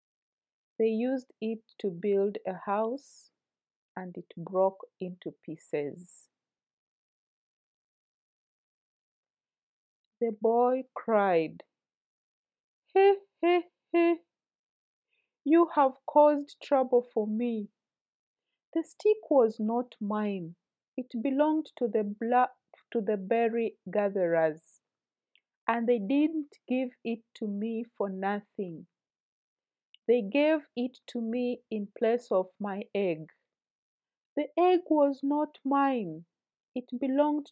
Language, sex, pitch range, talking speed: English, female, 200-270 Hz, 100 wpm